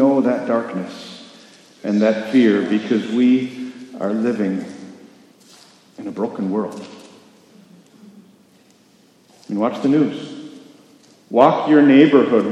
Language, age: English, 50-69